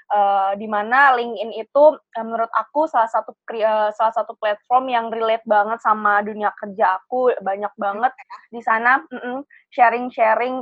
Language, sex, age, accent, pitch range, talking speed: Indonesian, female, 20-39, native, 205-240 Hz, 145 wpm